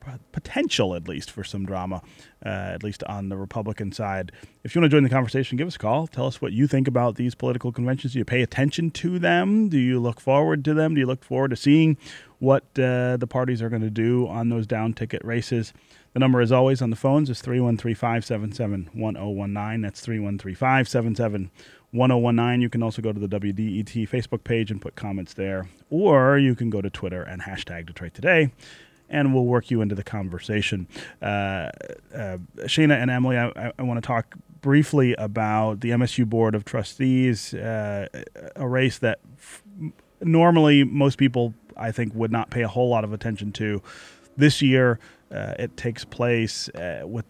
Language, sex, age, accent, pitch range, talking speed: English, male, 30-49, American, 105-130 Hz, 185 wpm